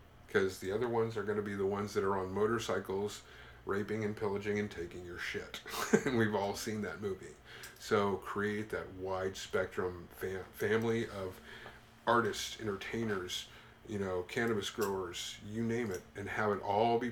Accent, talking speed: American, 170 wpm